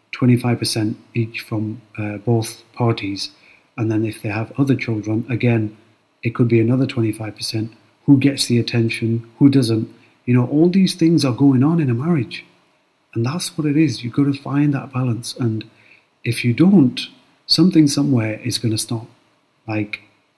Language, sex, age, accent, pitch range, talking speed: English, male, 40-59, British, 110-130 Hz, 170 wpm